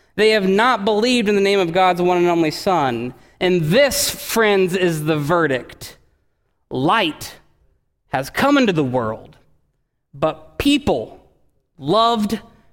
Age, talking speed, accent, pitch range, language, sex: 30-49, 130 wpm, American, 135-195 Hz, English, male